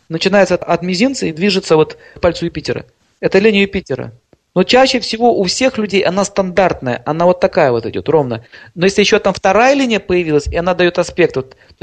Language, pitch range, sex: Russian, 160-205 Hz, male